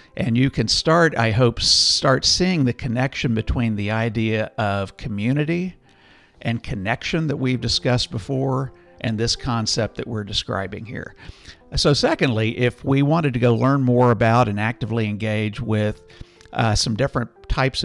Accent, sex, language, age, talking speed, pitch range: American, male, English, 50-69, 155 wpm, 110-130 Hz